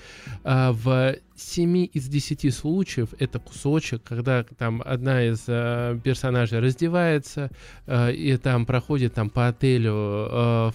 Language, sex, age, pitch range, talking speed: Russian, male, 20-39, 115-140 Hz, 125 wpm